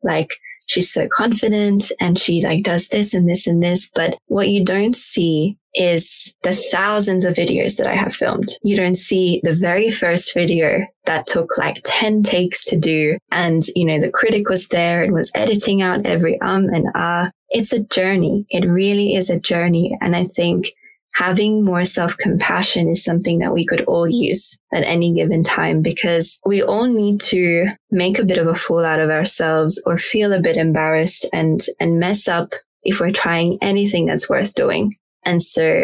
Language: English